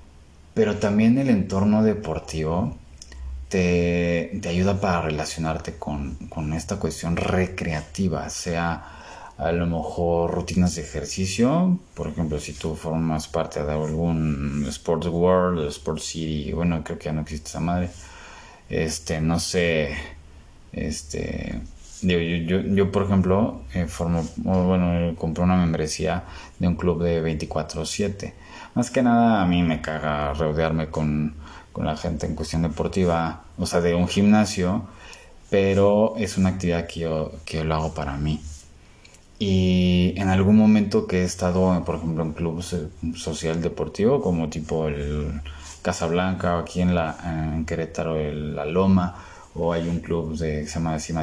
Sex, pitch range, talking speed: male, 80-90 Hz, 155 wpm